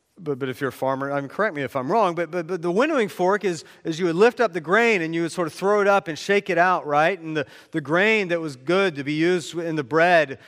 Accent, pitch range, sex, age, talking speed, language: American, 150-205 Hz, male, 40-59, 305 wpm, English